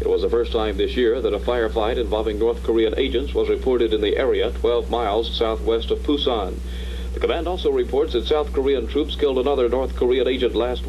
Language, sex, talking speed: English, male, 210 wpm